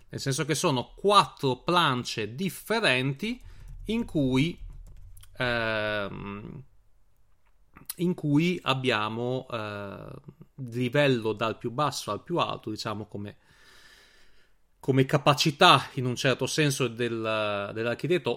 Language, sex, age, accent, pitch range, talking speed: Italian, male, 30-49, native, 110-145 Hz, 100 wpm